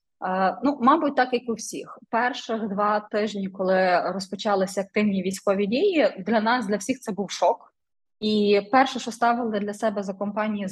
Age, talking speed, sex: 20-39, 160 wpm, female